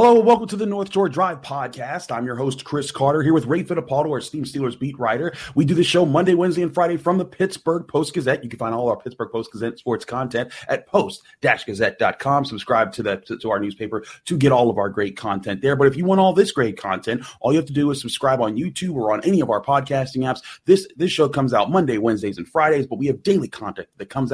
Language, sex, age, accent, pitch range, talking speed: English, male, 30-49, American, 125-190 Hz, 250 wpm